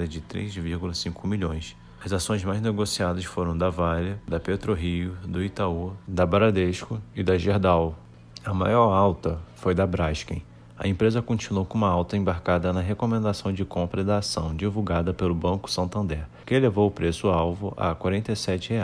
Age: 20-39